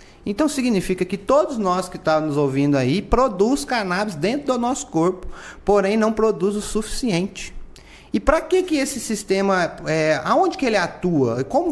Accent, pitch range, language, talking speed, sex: Brazilian, 150-205 Hz, Portuguese, 160 wpm, male